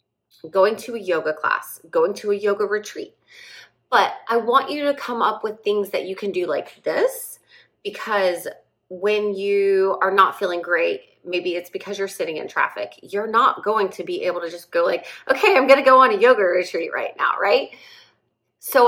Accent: American